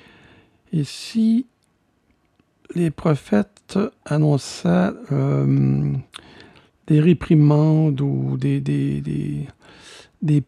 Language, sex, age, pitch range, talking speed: French, male, 60-79, 130-175 Hz, 75 wpm